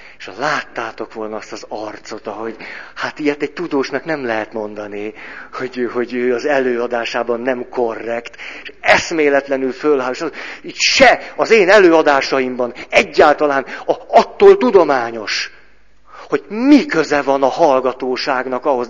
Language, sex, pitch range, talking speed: Hungarian, male, 125-200 Hz, 135 wpm